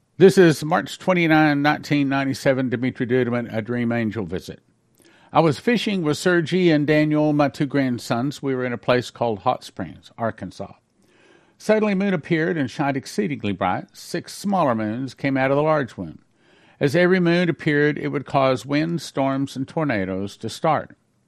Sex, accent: male, American